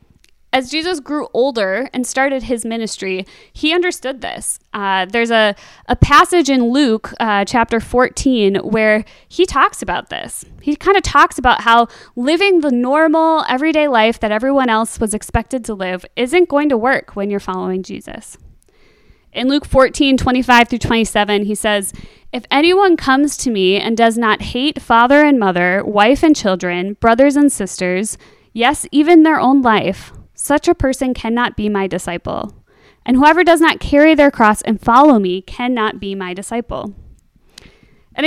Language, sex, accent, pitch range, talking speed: English, female, American, 215-305 Hz, 165 wpm